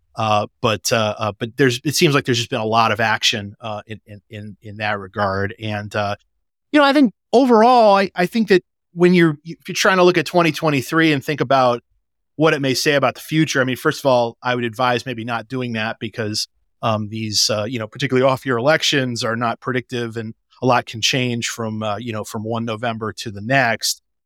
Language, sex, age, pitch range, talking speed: English, male, 30-49, 115-140 Hz, 230 wpm